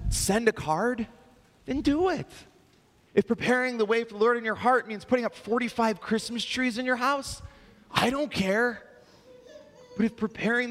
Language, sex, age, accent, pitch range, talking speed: English, male, 30-49, American, 160-230 Hz, 175 wpm